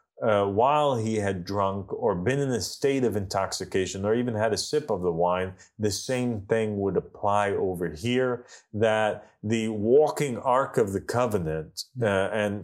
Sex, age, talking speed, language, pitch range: male, 30-49, 170 wpm, English, 90-105 Hz